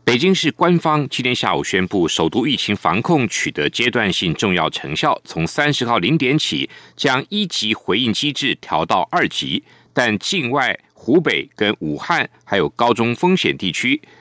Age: 50-69